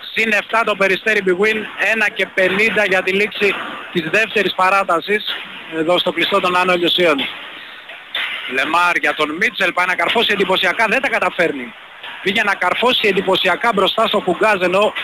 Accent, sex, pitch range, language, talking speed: native, male, 160-205 Hz, Greek, 150 wpm